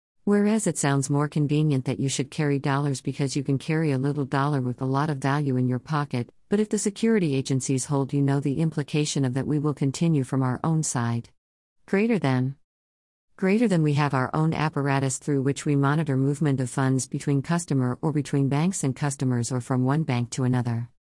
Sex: female